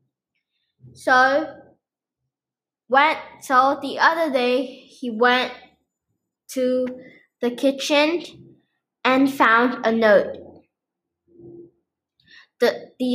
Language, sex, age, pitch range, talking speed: English, female, 10-29, 220-280 Hz, 80 wpm